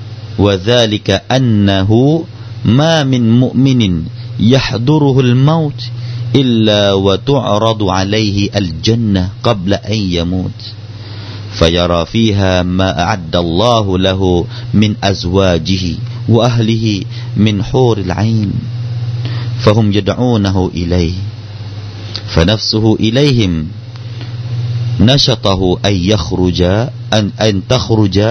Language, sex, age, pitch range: Thai, male, 40-59, 100-120 Hz